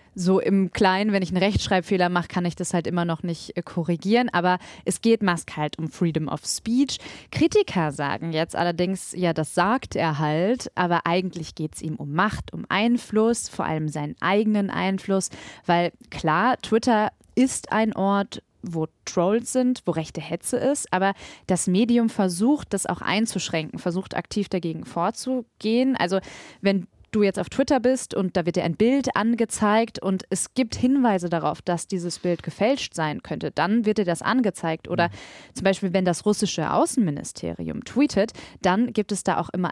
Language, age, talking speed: German, 20-39, 175 wpm